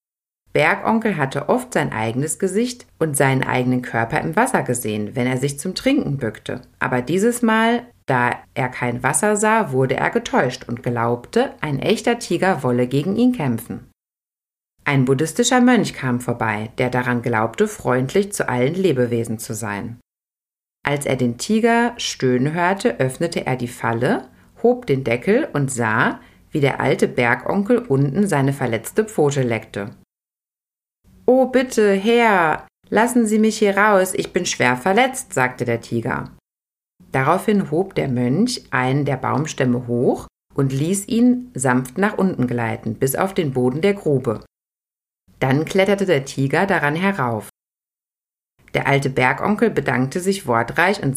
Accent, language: German, German